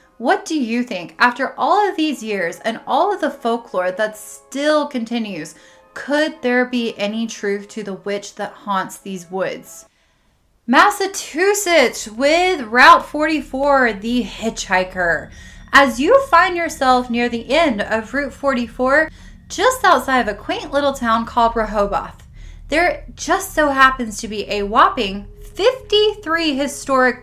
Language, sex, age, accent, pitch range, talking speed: English, female, 10-29, American, 220-300 Hz, 140 wpm